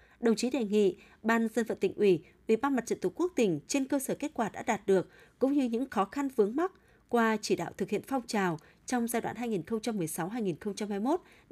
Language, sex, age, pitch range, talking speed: Vietnamese, female, 20-39, 195-260 Hz, 220 wpm